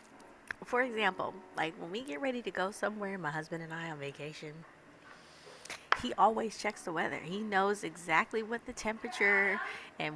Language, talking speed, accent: English, 165 wpm, American